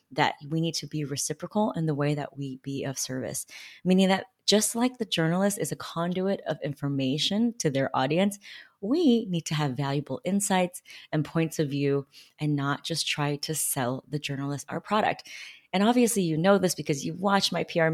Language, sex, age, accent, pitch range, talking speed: English, female, 20-39, American, 145-200 Hz, 195 wpm